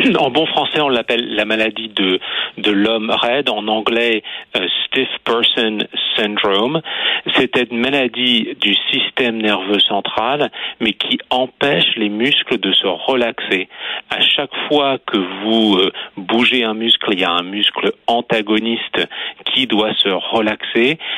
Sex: male